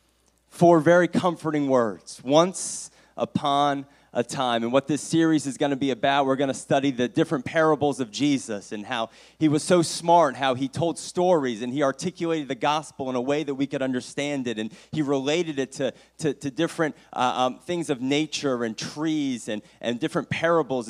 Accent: American